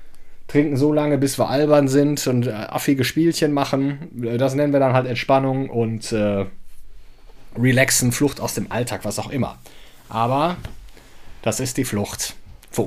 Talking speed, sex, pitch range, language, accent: 155 wpm, male, 110-150 Hz, German, German